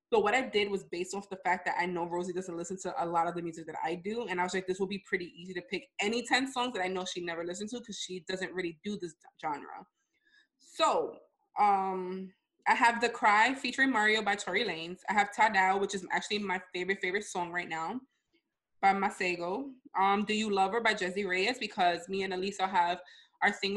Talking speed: 235 wpm